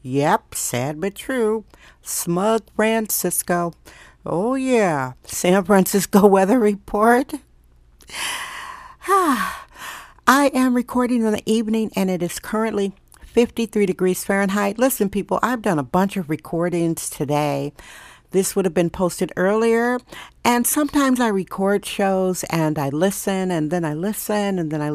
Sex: female